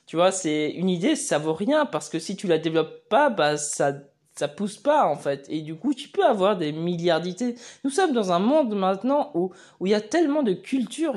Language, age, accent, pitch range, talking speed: French, 20-39, French, 160-210 Hz, 240 wpm